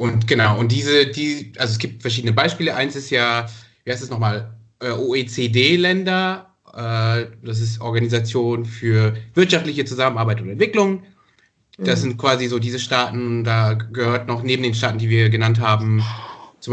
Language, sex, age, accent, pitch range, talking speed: German, male, 30-49, German, 115-135 Hz, 160 wpm